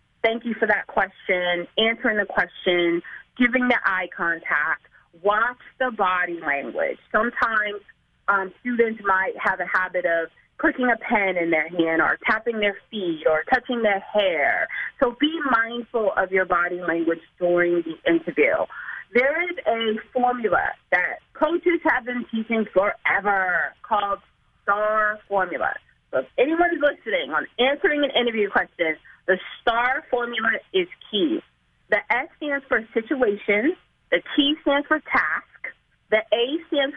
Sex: female